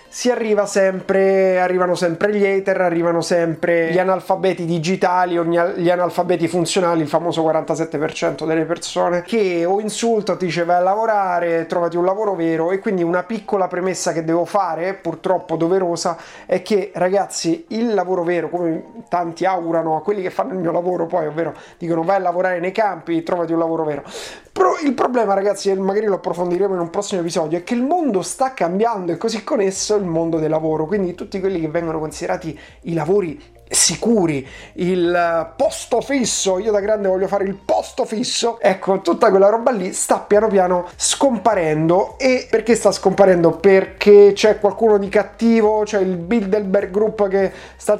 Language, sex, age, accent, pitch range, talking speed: Italian, male, 30-49, native, 170-205 Hz, 175 wpm